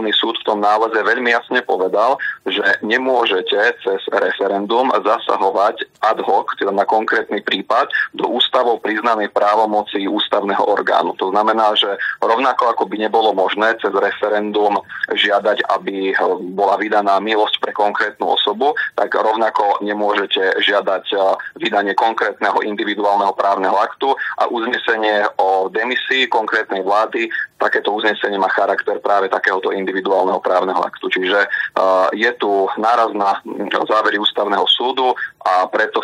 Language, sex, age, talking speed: Slovak, male, 30-49, 130 wpm